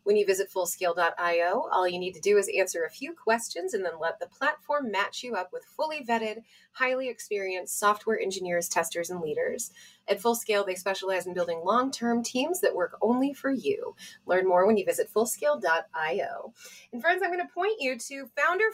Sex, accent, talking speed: female, American, 190 wpm